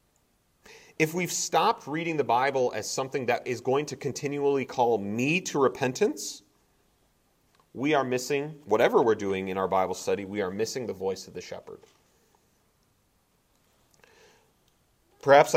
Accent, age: American, 30-49